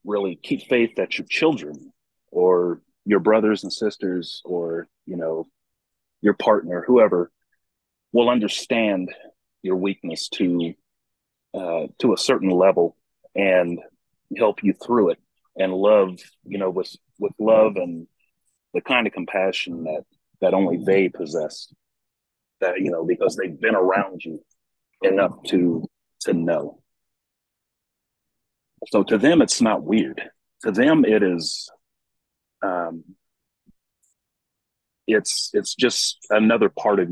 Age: 40-59